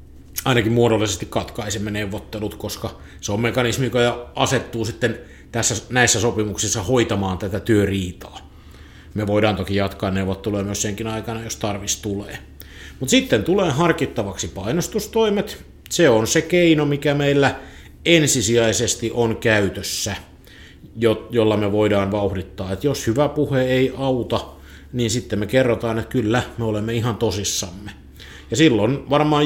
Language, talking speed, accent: Finnish, 130 wpm, native